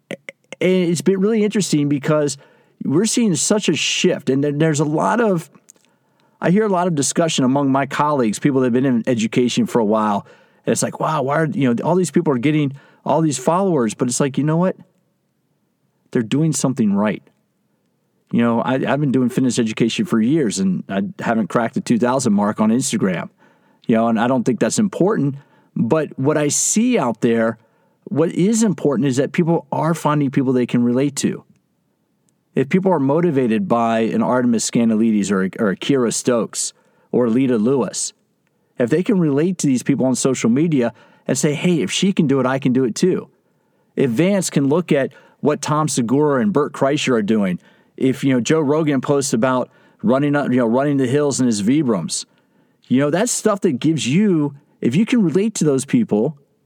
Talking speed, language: 200 wpm, English